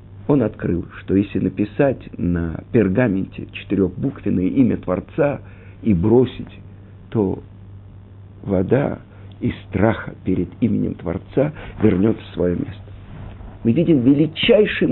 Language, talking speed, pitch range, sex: Russian, 105 wpm, 100-140 Hz, male